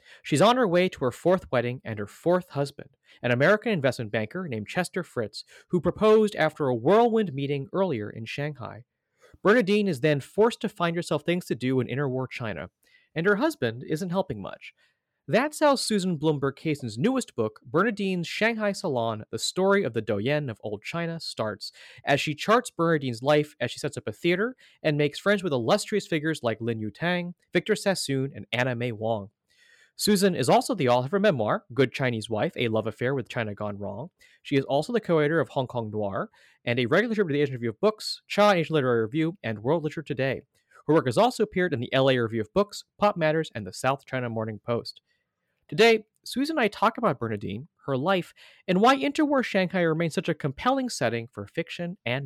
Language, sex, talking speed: English, male, 205 wpm